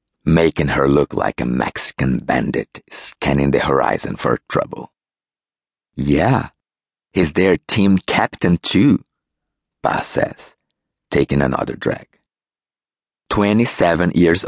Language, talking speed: English, 105 wpm